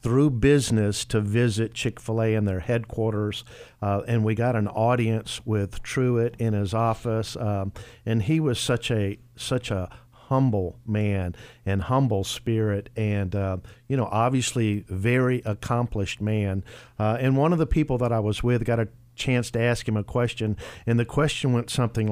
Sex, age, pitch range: male, 50-69, 100-120 Hz